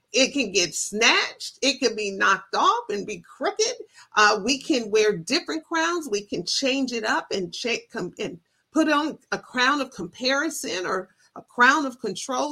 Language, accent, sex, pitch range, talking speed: English, American, female, 230-335 Hz, 175 wpm